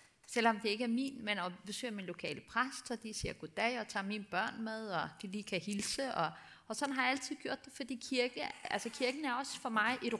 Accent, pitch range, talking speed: native, 185-245 Hz, 245 wpm